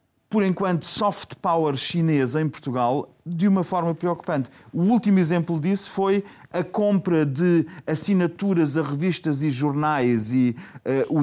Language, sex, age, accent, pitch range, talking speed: Portuguese, male, 30-49, Portuguese, 135-175 Hz, 140 wpm